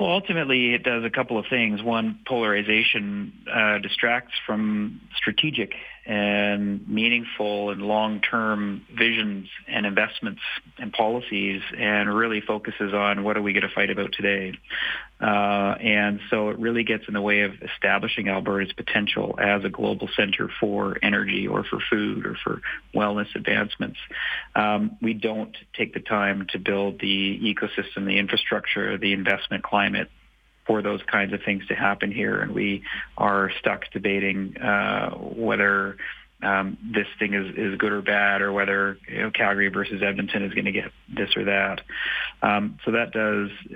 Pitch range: 100-110 Hz